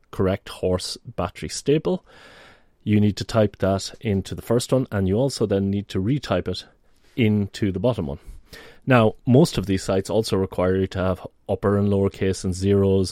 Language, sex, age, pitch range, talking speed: English, male, 30-49, 95-105 Hz, 185 wpm